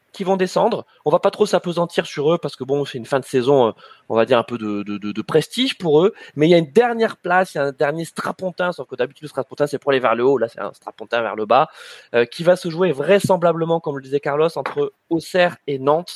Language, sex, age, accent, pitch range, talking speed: French, male, 20-39, French, 135-185 Hz, 275 wpm